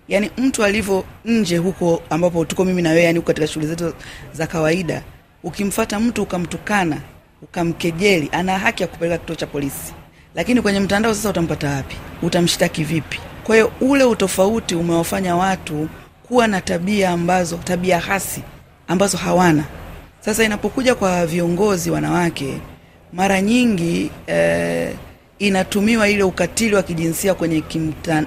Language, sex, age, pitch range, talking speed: Swahili, female, 40-59, 160-195 Hz, 130 wpm